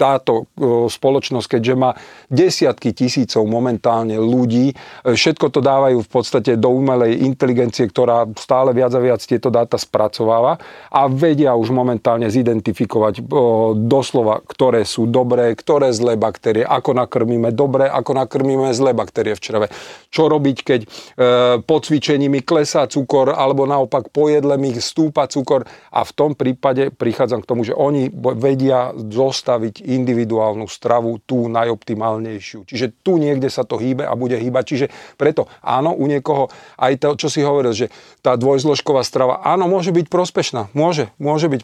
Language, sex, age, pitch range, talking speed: Slovak, male, 40-59, 115-140 Hz, 150 wpm